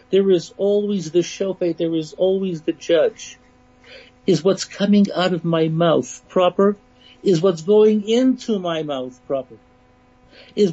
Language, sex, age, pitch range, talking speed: English, male, 60-79, 150-200 Hz, 145 wpm